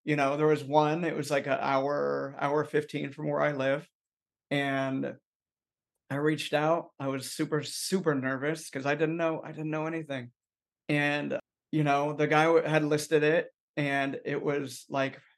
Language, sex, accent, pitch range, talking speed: English, male, American, 140-155 Hz, 175 wpm